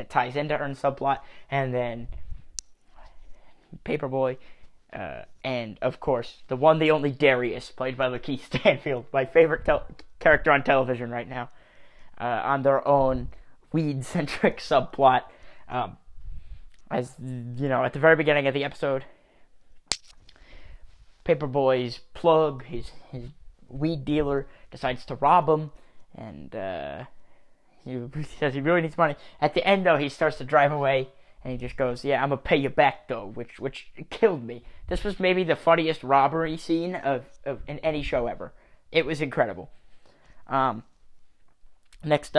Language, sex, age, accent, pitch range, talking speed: English, male, 20-39, American, 125-150 Hz, 150 wpm